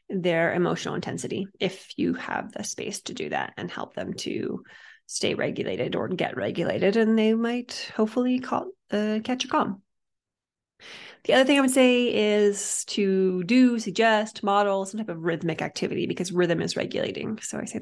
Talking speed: 175 wpm